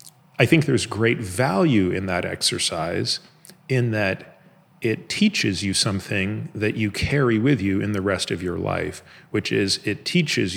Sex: male